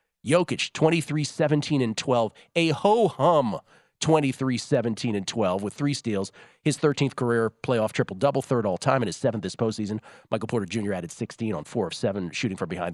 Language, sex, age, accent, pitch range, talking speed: English, male, 40-59, American, 110-145 Hz, 190 wpm